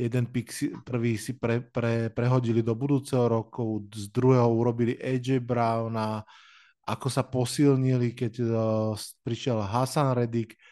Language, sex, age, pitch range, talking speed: Slovak, male, 20-39, 120-140 Hz, 130 wpm